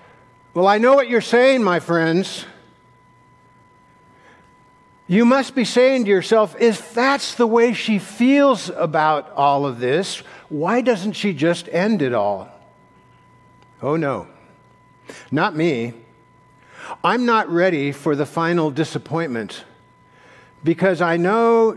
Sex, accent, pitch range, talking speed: male, American, 125-175 Hz, 125 wpm